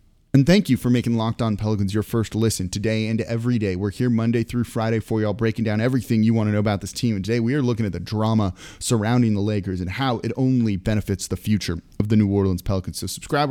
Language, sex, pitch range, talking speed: English, male, 100-120 Hz, 260 wpm